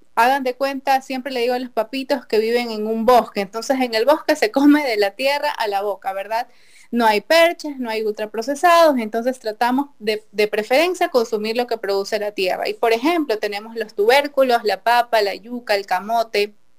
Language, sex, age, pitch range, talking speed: Spanish, female, 20-39, 220-270 Hz, 200 wpm